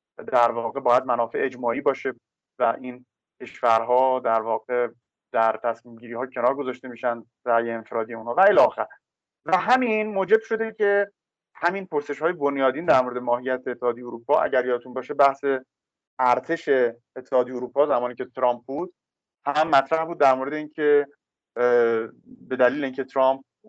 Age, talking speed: 30-49, 150 wpm